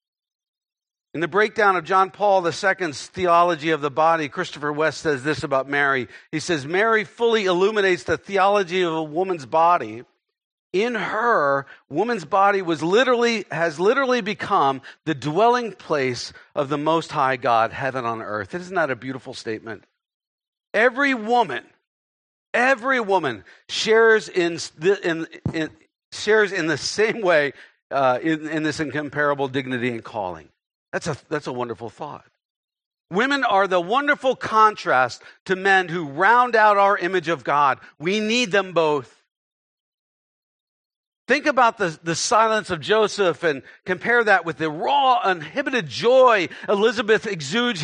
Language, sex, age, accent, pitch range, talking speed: English, male, 50-69, American, 160-230 Hz, 145 wpm